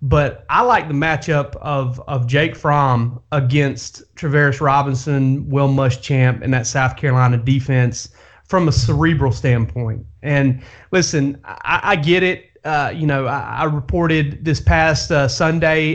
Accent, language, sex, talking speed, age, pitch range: American, English, male, 145 wpm, 30-49, 130-150 Hz